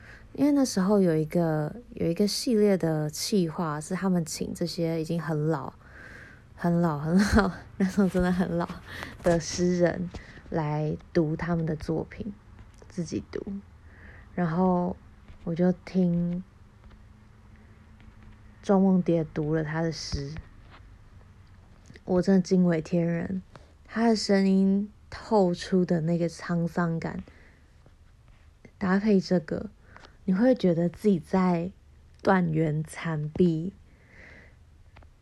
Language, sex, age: Chinese, female, 20-39